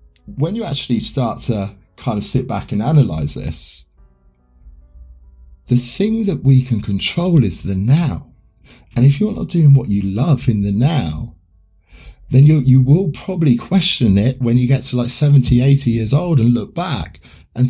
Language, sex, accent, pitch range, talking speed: English, male, British, 80-140 Hz, 175 wpm